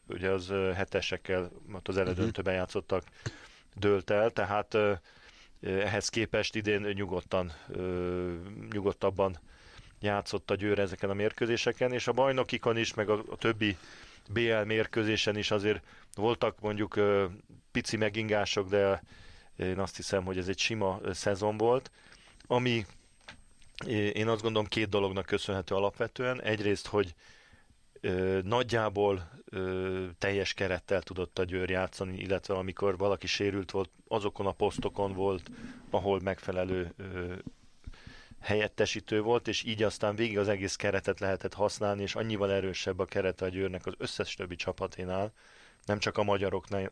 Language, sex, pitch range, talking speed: Hungarian, male, 95-105 Hz, 130 wpm